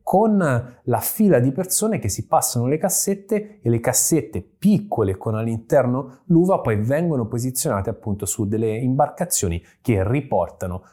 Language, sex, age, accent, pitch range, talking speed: Italian, male, 20-39, native, 100-130 Hz, 145 wpm